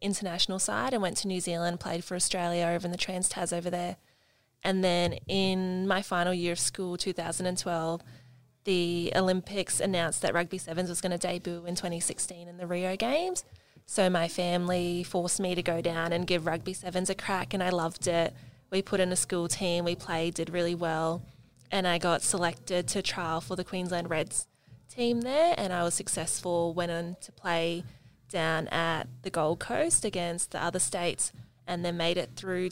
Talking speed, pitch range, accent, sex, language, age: 195 wpm, 170-185 Hz, Australian, female, English, 20-39